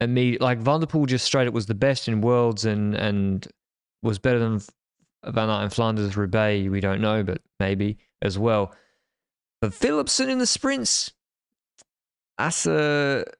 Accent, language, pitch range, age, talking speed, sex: Australian, English, 110-130 Hz, 20-39, 150 wpm, male